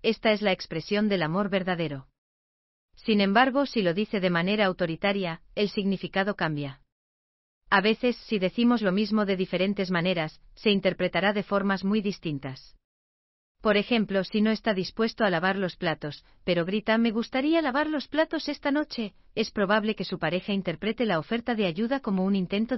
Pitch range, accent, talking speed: 170-215 Hz, Spanish, 170 wpm